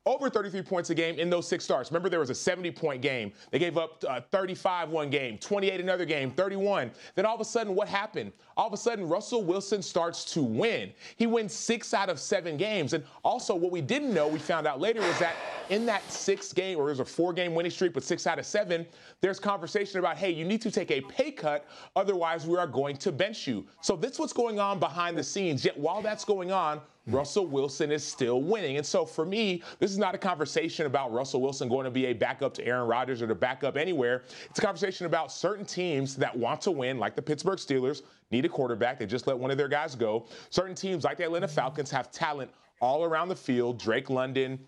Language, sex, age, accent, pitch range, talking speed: English, male, 30-49, American, 150-200 Hz, 235 wpm